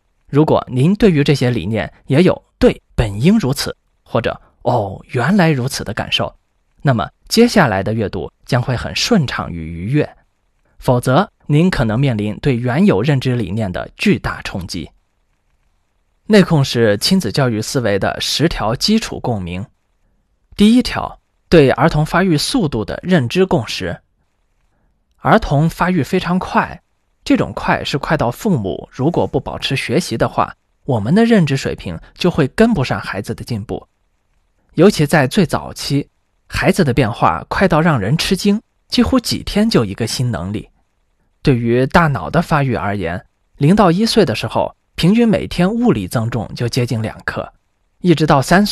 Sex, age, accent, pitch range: male, 20-39, native, 105-175 Hz